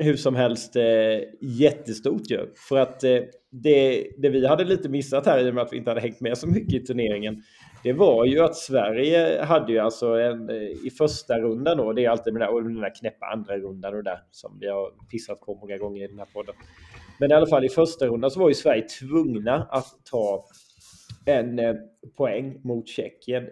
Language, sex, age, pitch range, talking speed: Swedish, male, 30-49, 115-135 Hz, 210 wpm